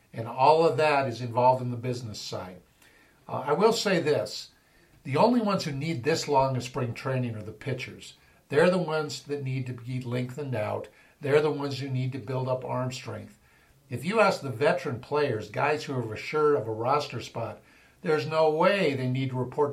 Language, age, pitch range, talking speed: English, 50-69, 115-145 Hz, 205 wpm